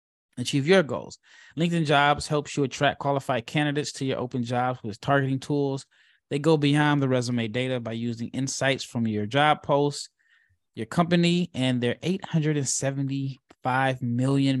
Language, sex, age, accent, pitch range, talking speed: English, male, 20-39, American, 120-150 Hz, 150 wpm